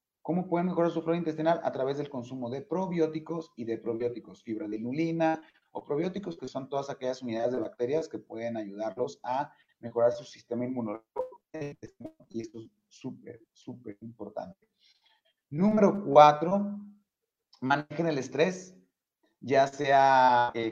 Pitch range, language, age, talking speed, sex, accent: 120-155 Hz, Spanish, 30-49, 140 wpm, male, Mexican